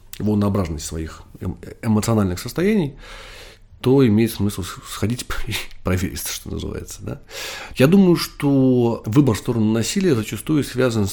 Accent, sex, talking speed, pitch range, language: native, male, 120 wpm, 95-120 Hz, Russian